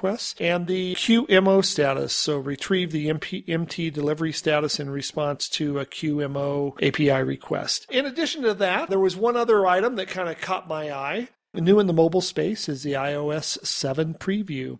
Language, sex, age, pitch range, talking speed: English, male, 40-59, 150-195 Hz, 170 wpm